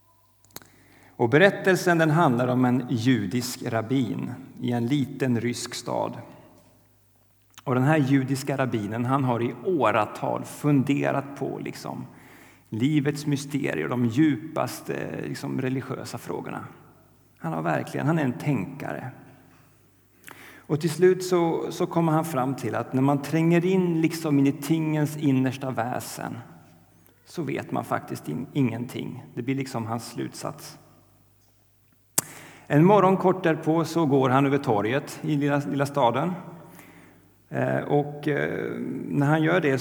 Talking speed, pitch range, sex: 130 wpm, 115-155 Hz, male